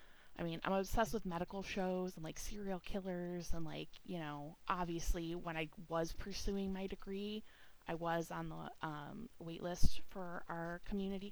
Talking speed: 170 wpm